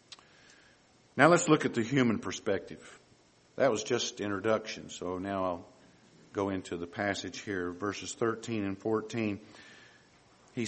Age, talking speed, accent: 50-69, 135 wpm, American